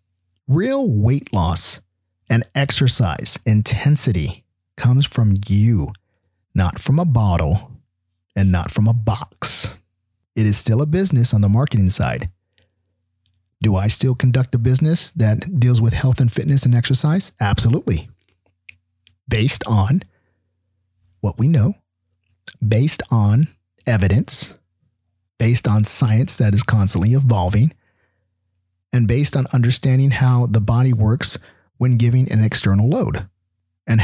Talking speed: 125 wpm